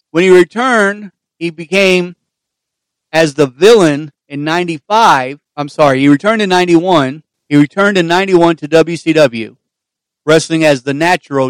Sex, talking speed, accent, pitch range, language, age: male, 135 wpm, American, 145-185 Hz, English, 50-69